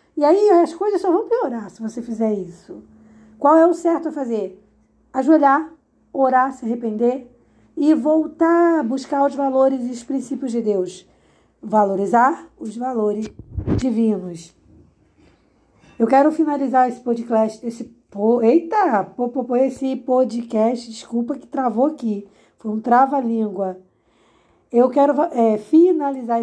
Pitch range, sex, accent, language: 220-280 Hz, female, Brazilian, Portuguese